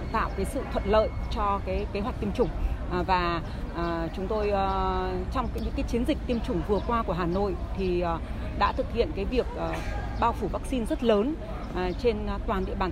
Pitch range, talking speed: 175-235 Hz, 195 wpm